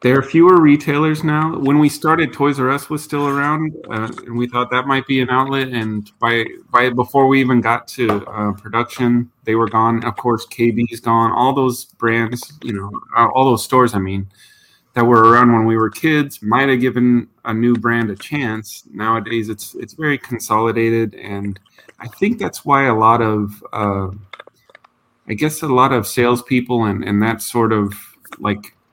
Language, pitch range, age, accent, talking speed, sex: English, 110-130 Hz, 30-49, American, 190 wpm, male